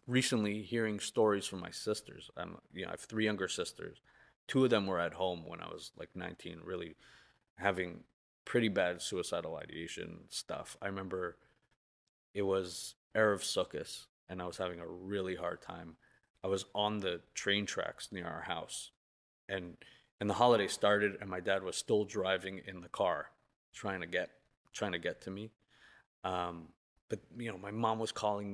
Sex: male